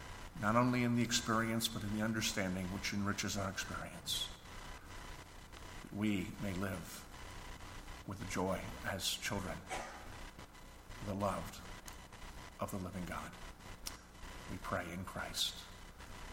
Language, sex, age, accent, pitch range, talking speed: English, male, 50-69, American, 95-125 Hz, 115 wpm